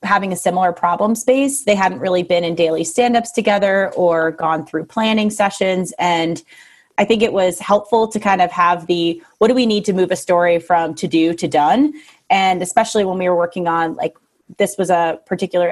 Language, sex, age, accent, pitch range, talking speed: English, female, 30-49, American, 170-205 Hz, 205 wpm